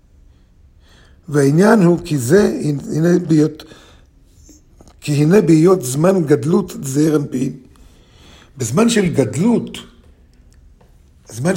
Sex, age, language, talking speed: male, 50-69, Hebrew, 90 wpm